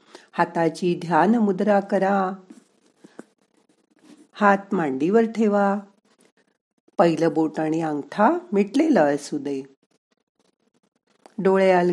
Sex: female